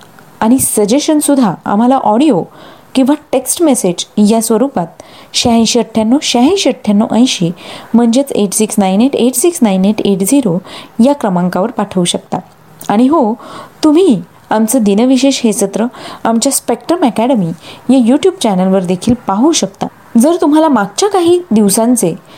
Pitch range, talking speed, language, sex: 205-270 Hz, 110 wpm, Marathi, female